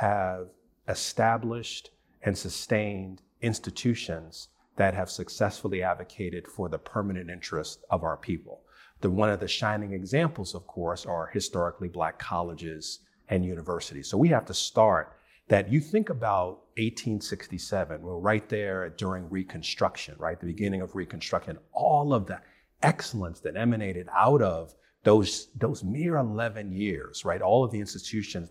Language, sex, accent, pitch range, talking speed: English, male, American, 90-115 Hz, 145 wpm